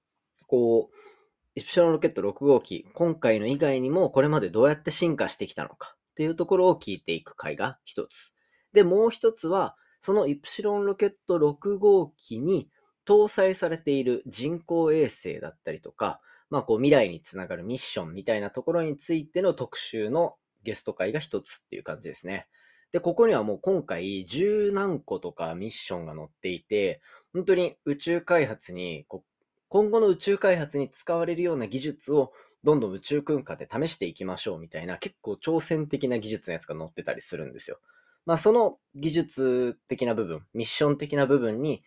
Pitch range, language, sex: 140-225 Hz, Japanese, male